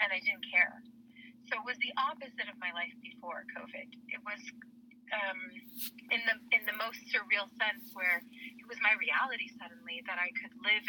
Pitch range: 200-255 Hz